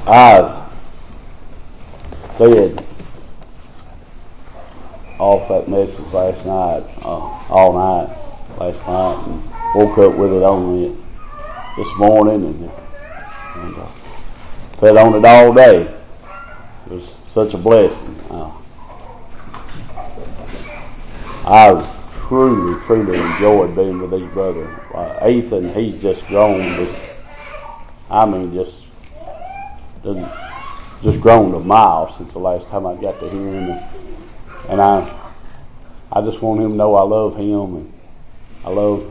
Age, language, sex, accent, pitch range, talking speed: 50-69, English, male, American, 95-115 Hz, 125 wpm